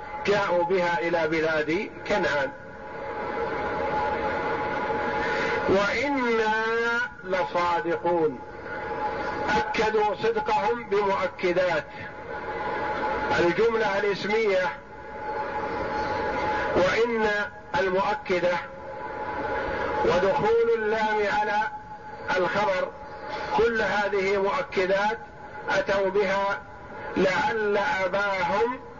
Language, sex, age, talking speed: Arabic, male, 50-69, 50 wpm